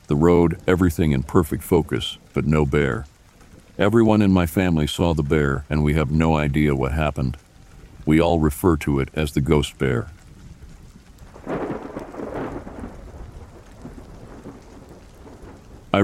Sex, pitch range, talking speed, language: male, 75-90 Hz, 125 wpm, English